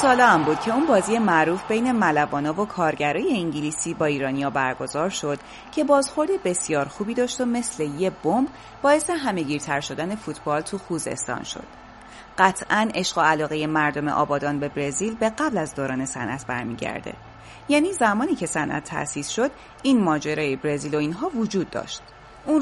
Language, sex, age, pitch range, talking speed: Persian, female, 30-49, 150-230 Hz, 155 wpm